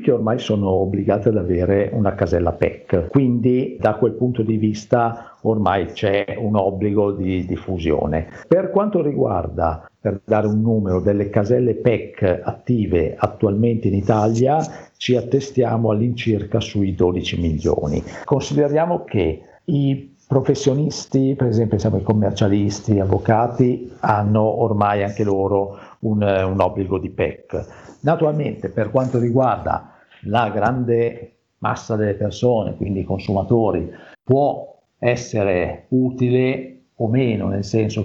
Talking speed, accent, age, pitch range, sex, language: 125 wpm, native, 50-69, 95-120 Hz, male, Italian